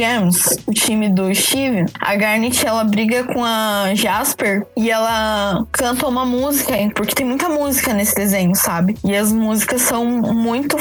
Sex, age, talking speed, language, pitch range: female, 10-29, 160 wpm, Portuguese, 205-245 Hz